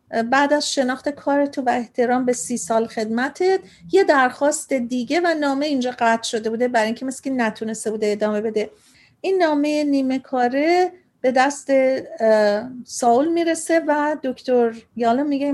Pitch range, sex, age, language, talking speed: 230-285 Hz, female, 40-59, Persian, 145 wpm